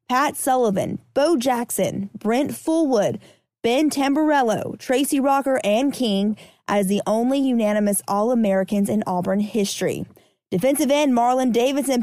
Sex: female